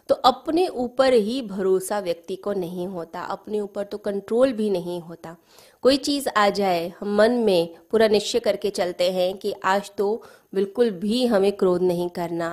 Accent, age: native, 20-39